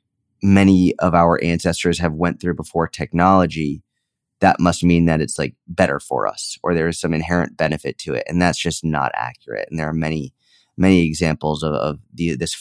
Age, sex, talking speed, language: 30-49, male, 195 wpm, English